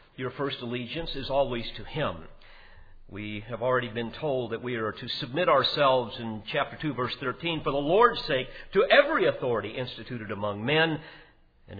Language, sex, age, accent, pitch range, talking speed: English, male, 50-69, American, 110-150 Hz, 175 wpm